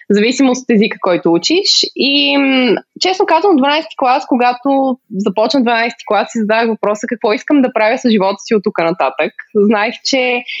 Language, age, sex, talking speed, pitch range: Bulgarian, 20-39, female, 170 wpm, 220-285 Hz